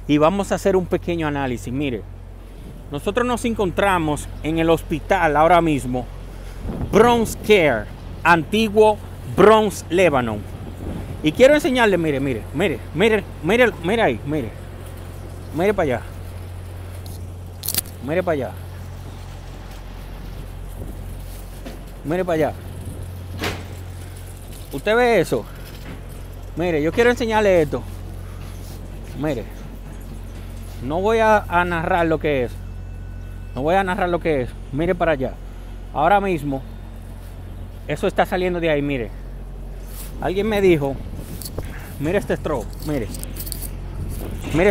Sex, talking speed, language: male, 110 wpm, Spanish